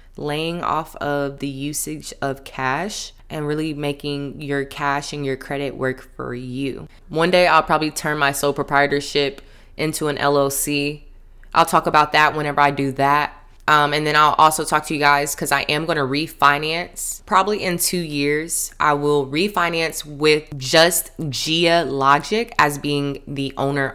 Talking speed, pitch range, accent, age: 165 wpm, 145-195 Hz, American, 20-39